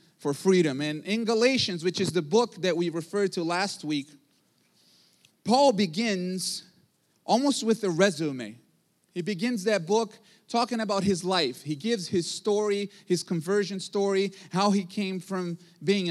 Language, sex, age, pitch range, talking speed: English, male, 30-49, 175-220 Hz, 155 wpm